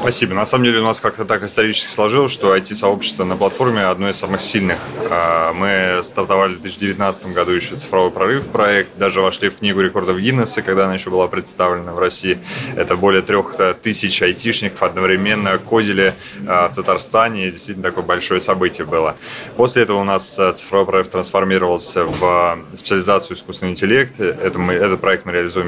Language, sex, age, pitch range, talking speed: Russian, male, 20-39, 90-100 Hz, 160 wpm